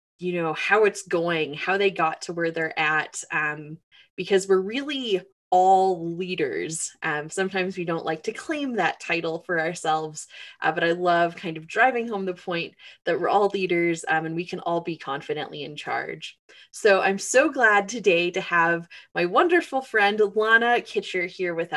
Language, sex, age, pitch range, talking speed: English, female, 20-39, 165-215 Hz, 180 wpm